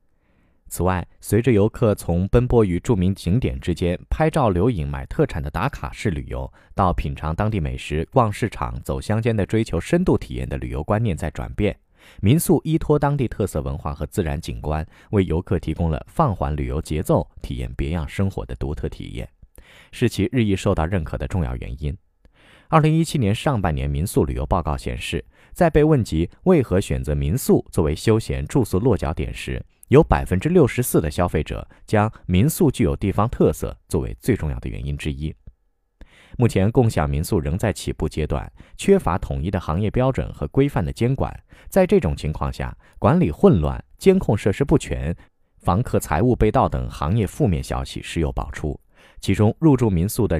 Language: Chinese